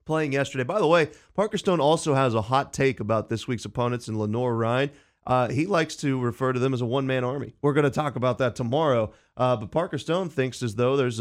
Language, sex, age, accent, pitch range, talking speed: English, male, 30-49, American, 115-140 Hz, 235 wpm